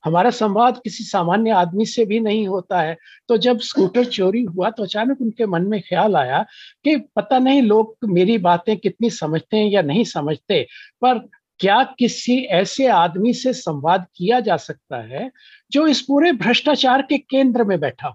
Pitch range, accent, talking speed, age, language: 185-245 Hz, native, 95 wpm, 50-69, Hindi